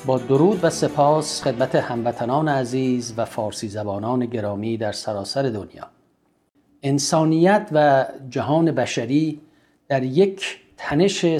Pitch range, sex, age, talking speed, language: 120-150 Hz, male, 50-69, 110 wpm, Persian